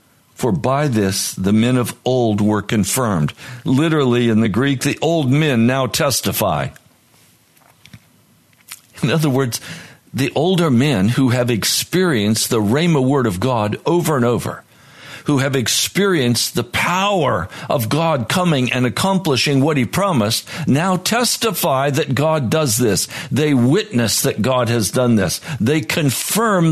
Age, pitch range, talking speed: 60-79, 105-145 Hz, 140 wpm